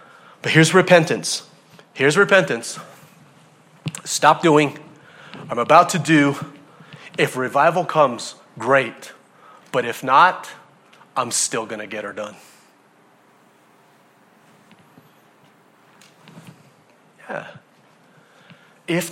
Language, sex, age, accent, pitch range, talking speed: English, male, 40-59, American, 140-195 Hz, 80 wpm